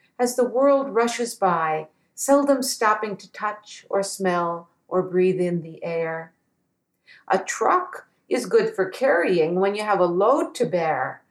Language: English